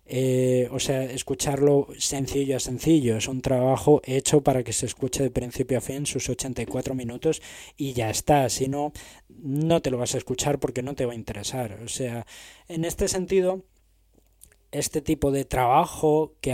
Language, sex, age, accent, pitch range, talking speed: Spanish, male, 20-39, Spanish, 120-140 Hz, 180 wpm